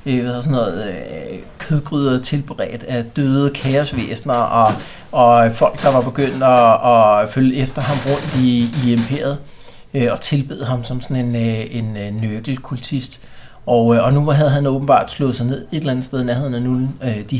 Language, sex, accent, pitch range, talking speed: Danish, male, native, 115-140 Hz, 160 wpm